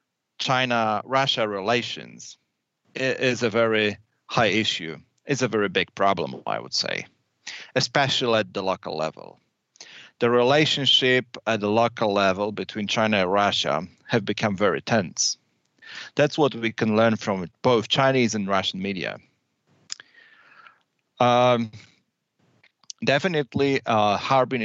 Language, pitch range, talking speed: English, 105-135 Hz, 120 wpm